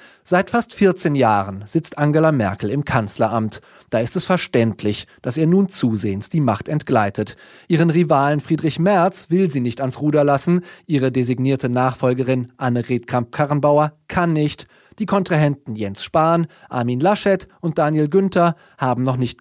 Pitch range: 125-170 Hz